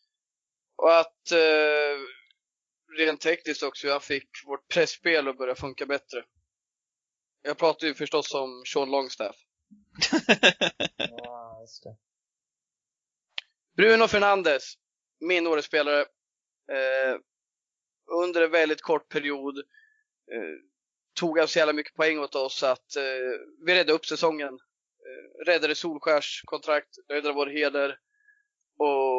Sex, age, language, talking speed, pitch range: male, 20-39, Swedish, 105 wpm, 140-165 Hz